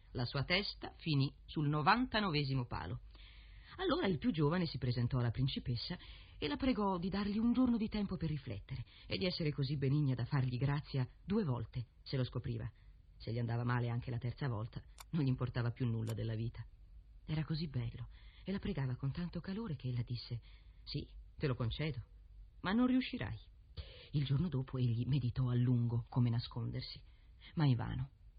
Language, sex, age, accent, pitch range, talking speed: Italian, female, 40-59, native, 120-190 Hz, 180 wpm